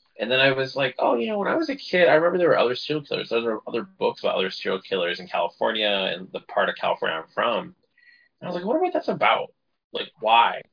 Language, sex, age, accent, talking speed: English, male, 20-39, American, 270 wpm